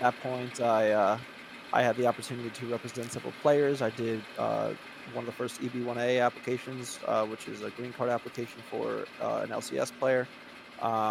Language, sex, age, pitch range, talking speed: English, male, 20-39, 115-130 Hz, 180 wpm